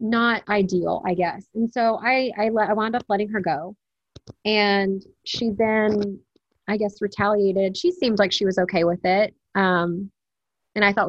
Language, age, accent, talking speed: English, 30-49, American, 175 wpm